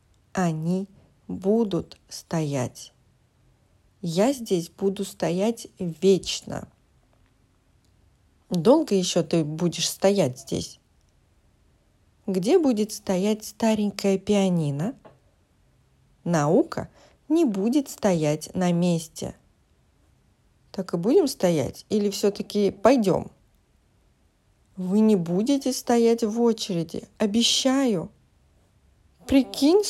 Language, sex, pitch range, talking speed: English, female, 175-230 Hz, 80 wpm